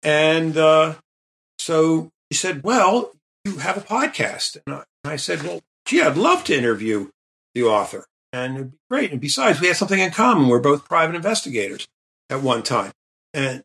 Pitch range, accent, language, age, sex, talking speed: 120-155 Hz, American, English, 50-69, male, 180 wpm